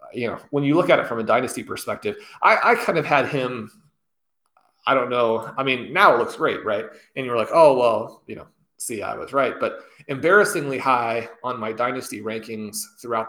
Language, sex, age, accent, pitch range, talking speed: English, male, 30-49, American, 115-150 Hz, 210 wpm